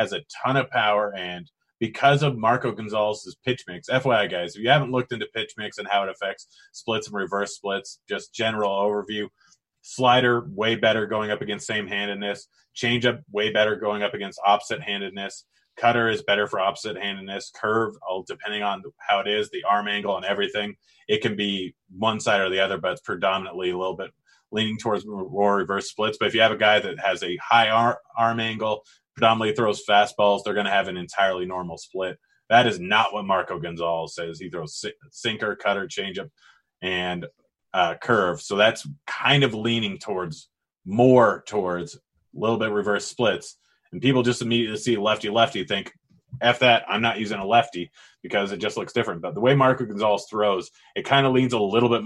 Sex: male